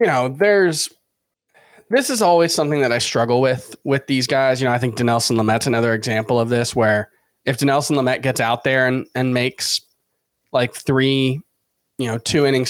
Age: 20-39